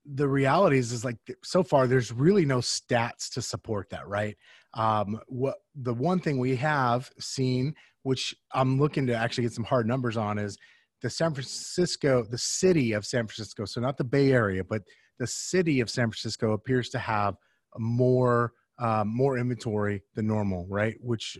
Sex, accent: male, American